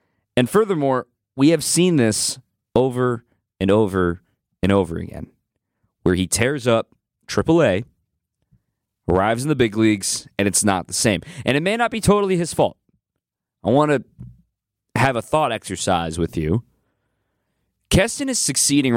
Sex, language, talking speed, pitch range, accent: male, English, 150 wpm, 100-145 Hz, American